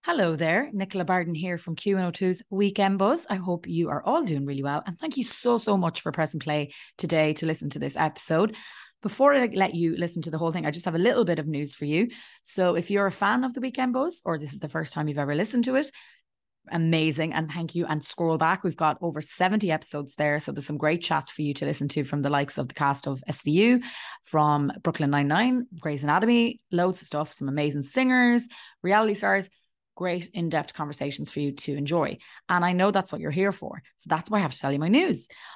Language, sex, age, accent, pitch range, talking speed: English, female, 20-39, Irish, 150-200 Hz, 240 wpm